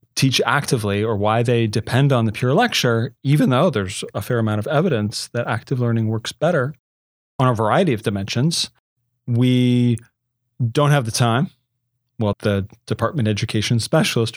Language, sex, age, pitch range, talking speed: English, male, 30-49, 110-135 Hz, 160 wpm